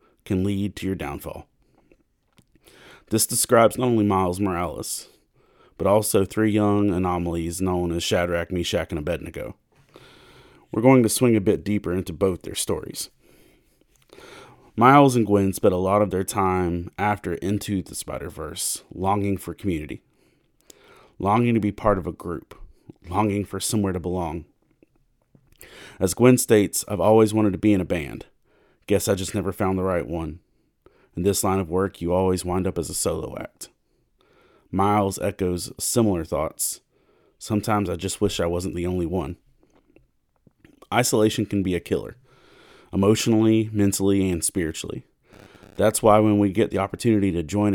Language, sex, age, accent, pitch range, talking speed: English, male, 30-49, American, 90-105 Hz, 155 wpm